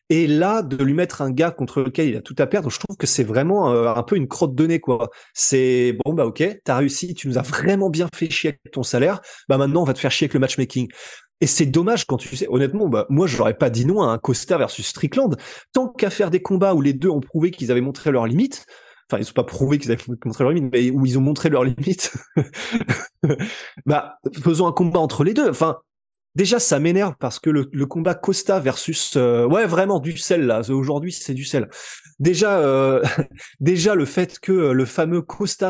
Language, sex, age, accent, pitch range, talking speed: French, male, 20-39, French, 135-185 Hz, 230 wpm